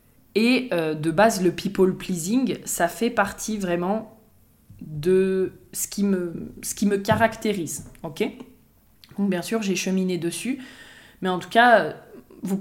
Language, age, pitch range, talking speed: French, 20-39, 185-220 Hz, 145 wpm